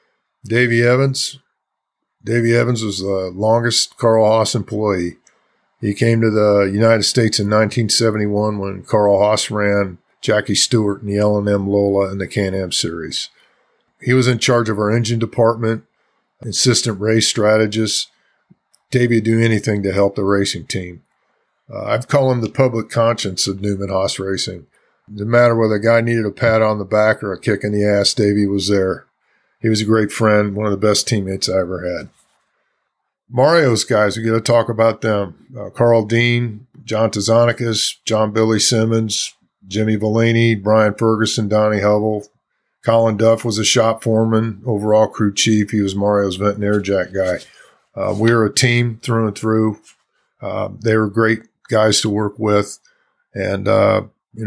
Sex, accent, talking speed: male, American, 170 wpm